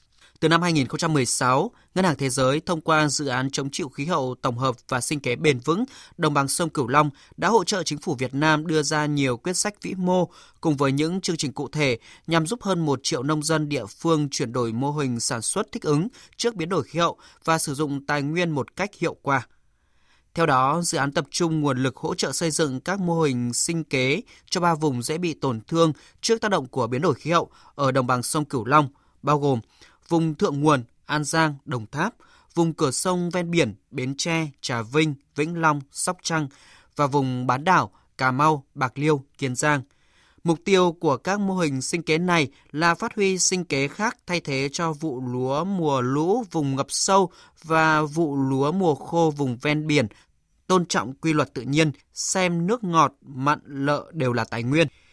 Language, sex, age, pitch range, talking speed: Vietnamese, male, 20-39, 135-170 Hz, 215 wpm